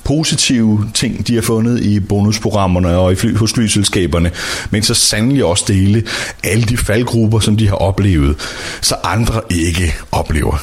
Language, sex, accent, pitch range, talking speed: Danish, male, native, 100-130 Hz, 170 wpm